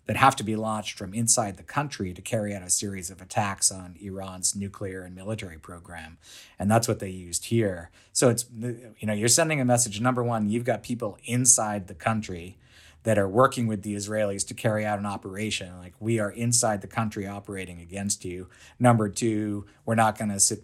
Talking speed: 205 wpm